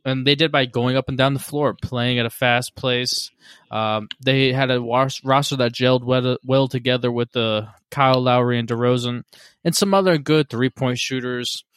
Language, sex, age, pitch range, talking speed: English, male, 20-39, 120-145 Hz, 195 wpm